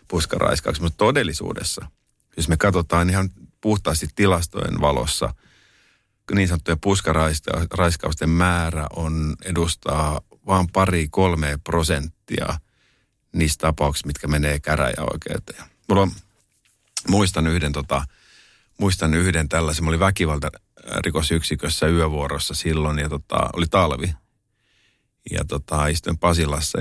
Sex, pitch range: male, 75-90 Hz